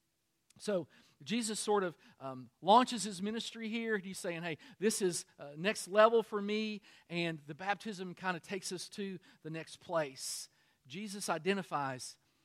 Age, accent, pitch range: 50-69, American, 165-215 Hz